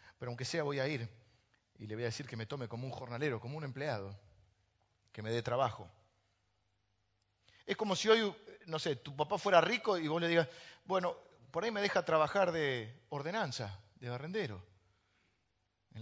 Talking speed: 185 wpm